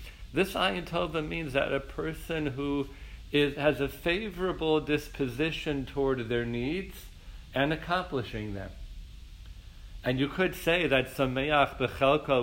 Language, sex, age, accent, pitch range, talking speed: English, male, 50-69, American, 110-150 Hz, 120 wpm